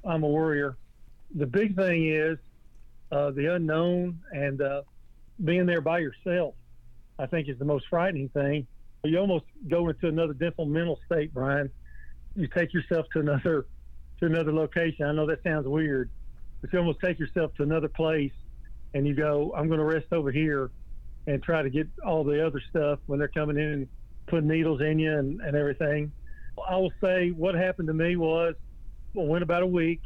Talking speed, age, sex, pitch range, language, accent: 190 wpm, 50-69, male, 140-165 Hz, English, American